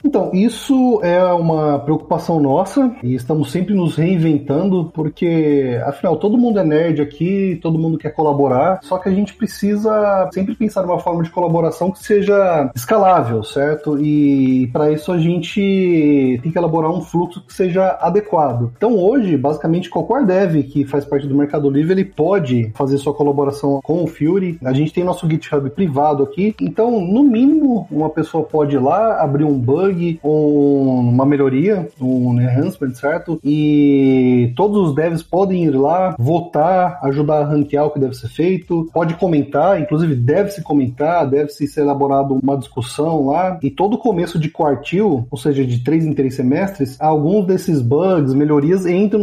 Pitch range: 145-185 Hz